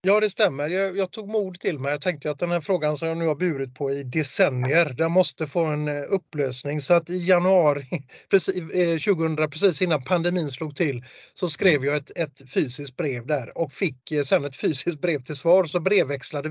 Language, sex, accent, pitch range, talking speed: Swedish, male, native, 150-180 Hz, 215 wpm